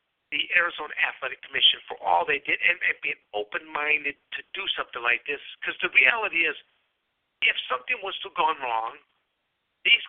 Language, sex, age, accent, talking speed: English, male, 50-69, American, 165 wpm